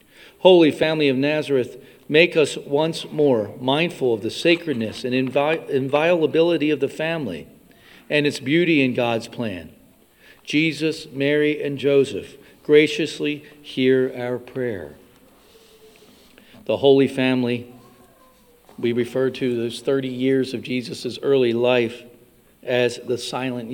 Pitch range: 125-150 Hz